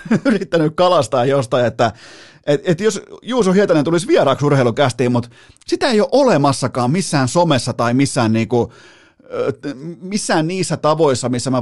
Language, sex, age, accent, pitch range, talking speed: Finnish, male, 30-49, native, 120-160 Hz, 135 wpm